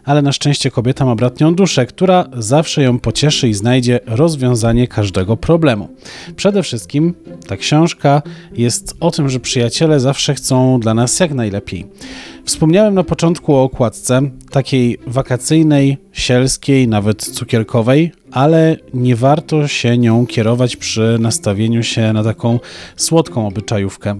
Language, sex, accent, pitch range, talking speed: Polish, male, native, 115-150 Hz, 135 wpm